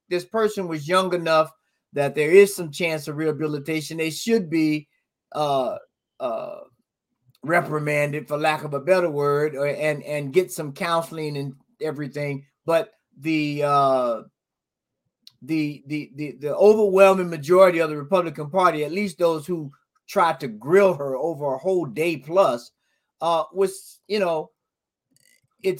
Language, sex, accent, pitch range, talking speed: English, male, American, 150-200 Hz, 145 wpm